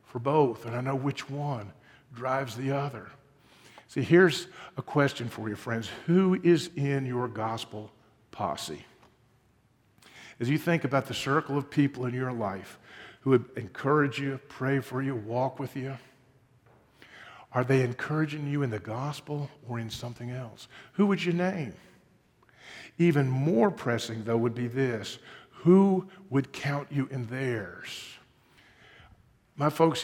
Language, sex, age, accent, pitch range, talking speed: English, male, 50-69, American, 115-145 Hz, 145 wpm